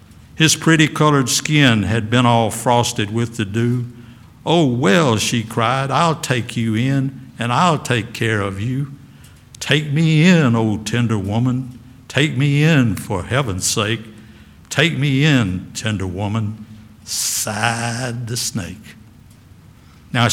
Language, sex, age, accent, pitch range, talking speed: English, male, 60-79, American, 110-145 Hz, 135 wpm